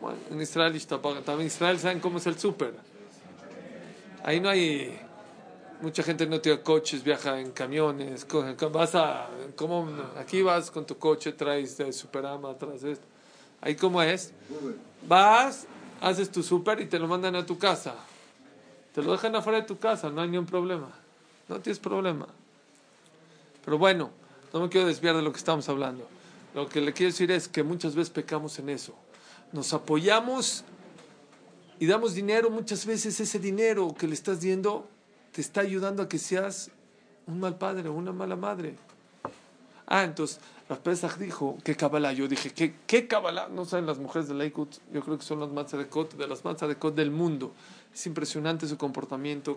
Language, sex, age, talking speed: Spanish, male, 40-59, 180 wpm